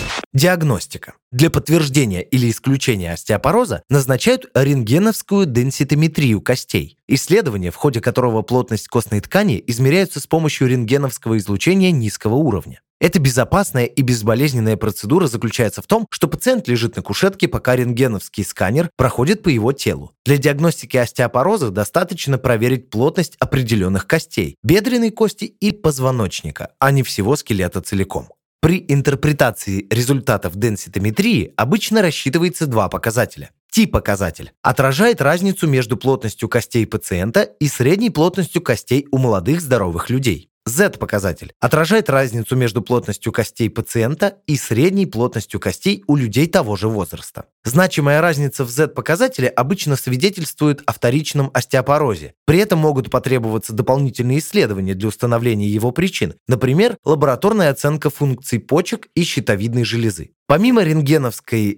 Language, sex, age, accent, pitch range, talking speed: Russian, male, 20-39, native, 115-160 Hz, 125 wpm